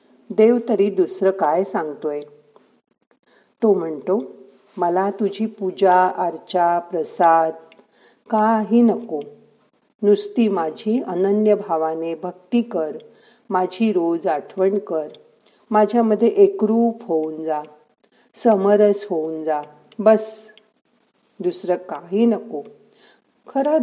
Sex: female